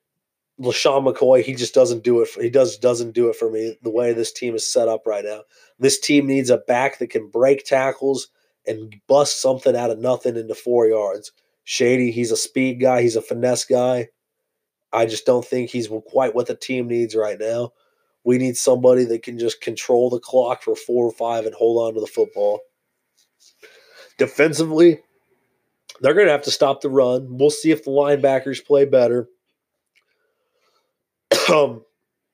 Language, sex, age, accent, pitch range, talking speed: English, male, 20-39, American, 120-180 Hz, 180 wpm